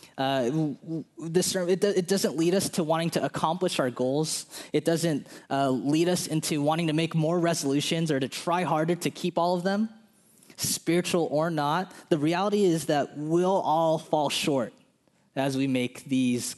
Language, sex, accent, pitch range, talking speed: English, male, American, 135-170 Hz, 175 wpm